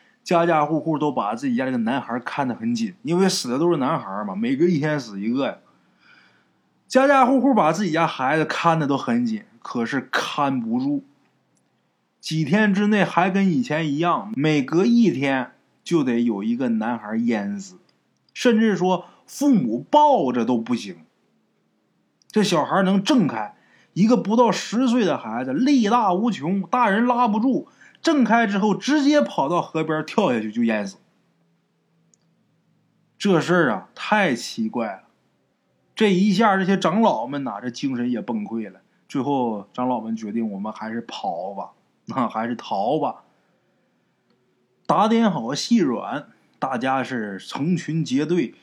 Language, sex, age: Chinese, male, 20-39